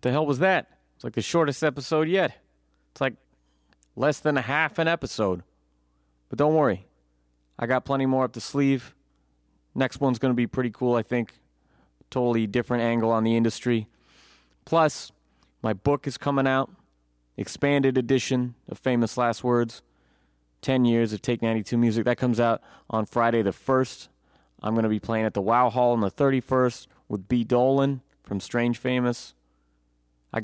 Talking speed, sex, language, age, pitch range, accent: 170 wpm, male, English, 30-49, 95-125 Hz, American